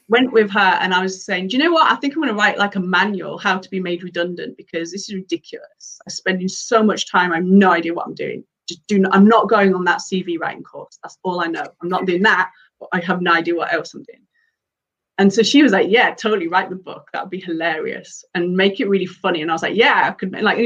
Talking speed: 280 wpm